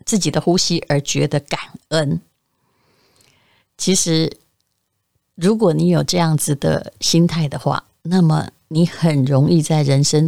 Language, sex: Chinese, female